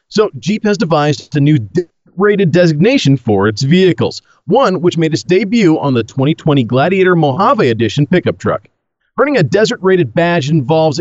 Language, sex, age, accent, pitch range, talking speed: English, male, 40-59, American, 140-195 Hz, 165 wpm